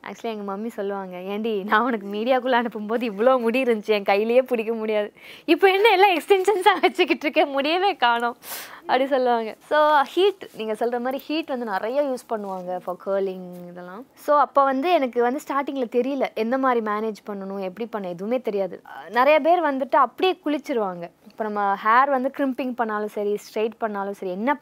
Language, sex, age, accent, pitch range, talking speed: Tamil, female, 20-39, native, 205-275 Hz, 170 wpm